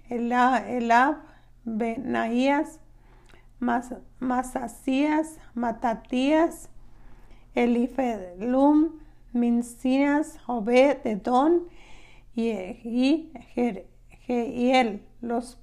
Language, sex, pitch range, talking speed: Spanish, female, 235-275 Hz, 45 wpm